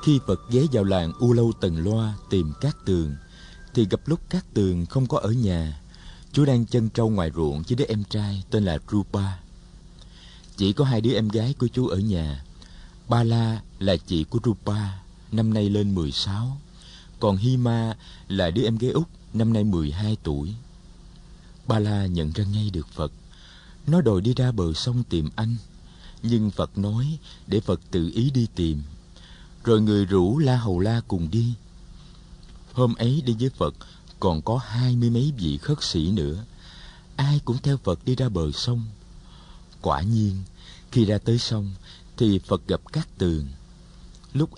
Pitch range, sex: 90-125 Hz, male